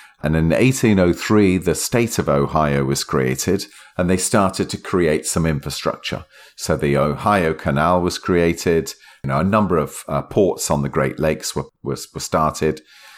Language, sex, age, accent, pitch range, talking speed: English, male, 40-59, British, 70-90 Hz, 170 wpm